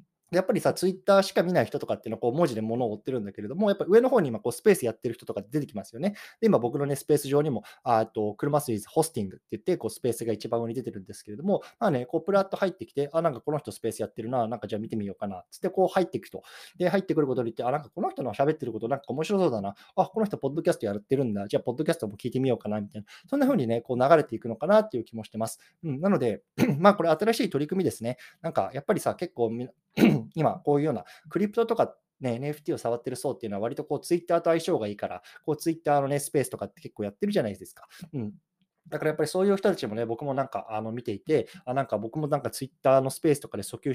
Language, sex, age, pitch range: Japanese, male, 20-39, 115-175 Hz